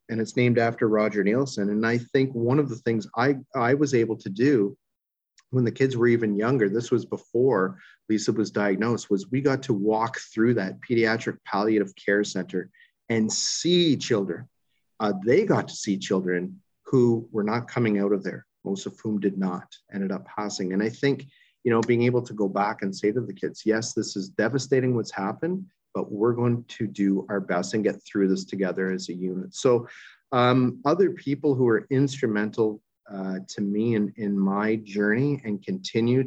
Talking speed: 195 wpm